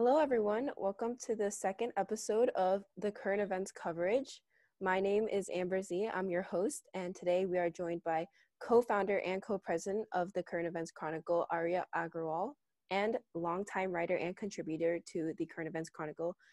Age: 20-39